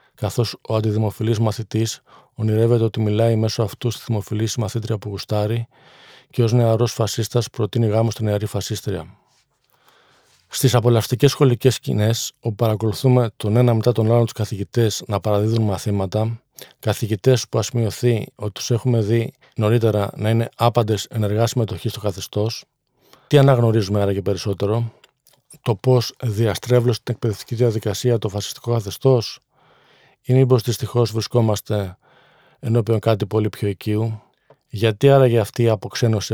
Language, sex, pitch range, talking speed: Greek, male, 110-120 Hz, 135 wpm